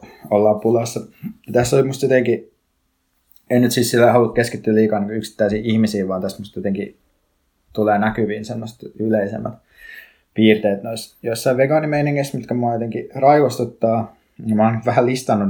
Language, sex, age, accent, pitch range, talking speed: Finnish, male, 20-39, native, 105-120 Hz, 135 wpm